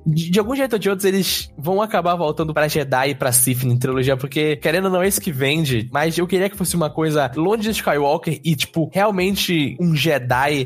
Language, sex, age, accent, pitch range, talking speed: Portuguese, male, 10-29, Brazilian, 135-165 Hz, 230 wpm